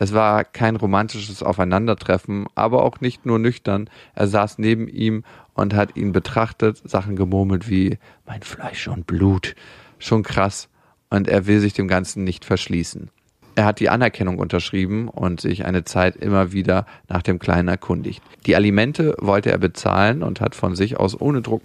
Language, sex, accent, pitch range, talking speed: German, male, German, 95-115 Hz, 170 wpm